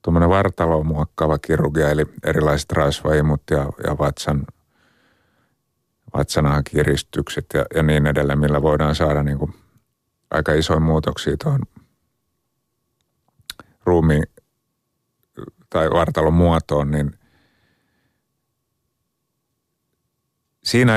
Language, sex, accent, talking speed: Finnish, male, native, 85 wpm